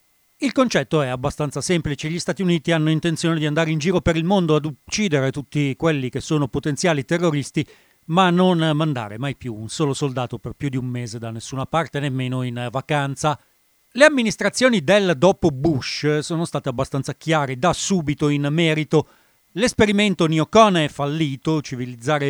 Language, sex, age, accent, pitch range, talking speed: Italian, male, 40-59, native, 135-180 Hz, 165 wpm